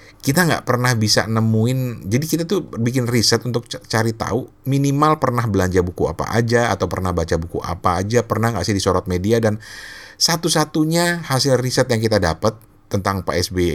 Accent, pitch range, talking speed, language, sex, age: native, 95-120 Hz, 180 wpm, Indonesian, male, 50-69